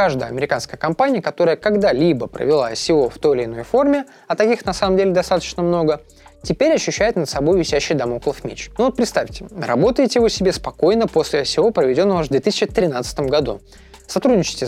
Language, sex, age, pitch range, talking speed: Russian, male, 20-39, 145-220 Hz, 165 wpm